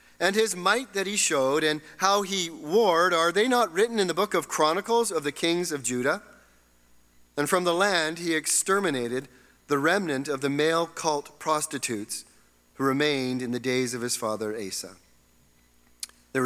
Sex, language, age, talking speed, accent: male, English, 40-59, 170 wpm, American